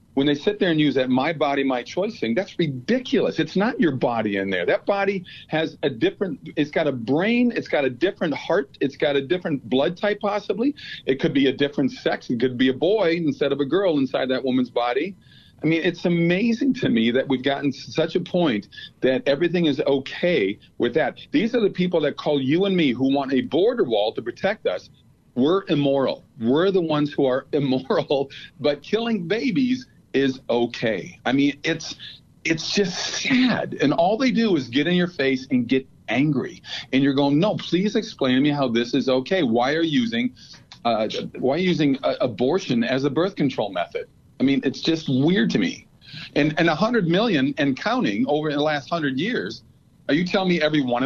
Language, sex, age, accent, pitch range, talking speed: English, male, 50-69, American, 135-205 Hz, 210 wpm